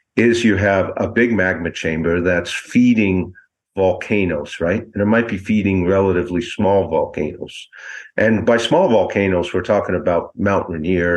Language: English